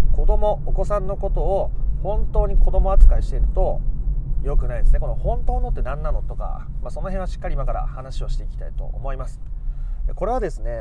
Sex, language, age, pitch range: male, Japanese, 30-49, 120-175 Hz